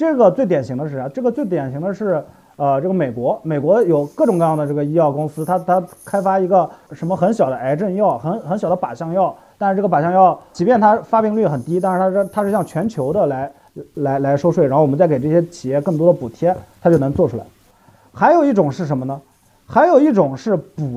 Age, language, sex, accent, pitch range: 30-49, Chinese, male, native, 150-240 Hz